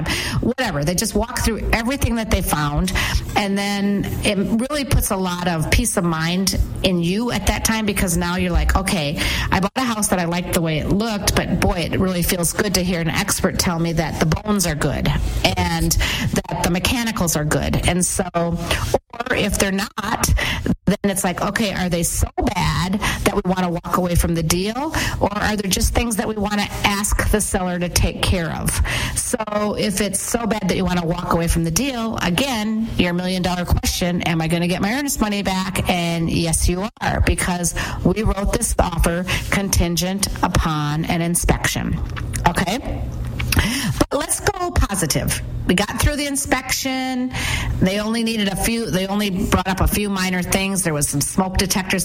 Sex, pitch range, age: female, 175-210 Hz, 40-59